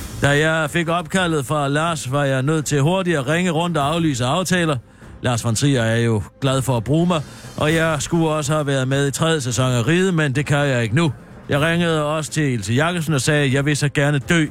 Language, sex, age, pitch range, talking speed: Danish, male, 60-79, 115-165 Hz, 245 wpm